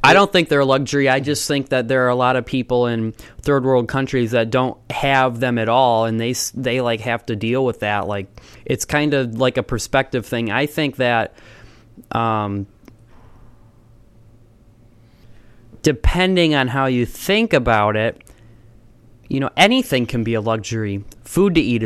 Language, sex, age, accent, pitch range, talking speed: English, male, 20-39, American, 115-145 Hz, 175 wpm